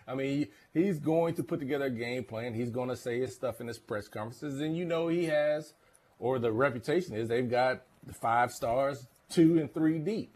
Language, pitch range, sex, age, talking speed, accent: English, 110-145 Hz, male, 30-49, 220 wpm, American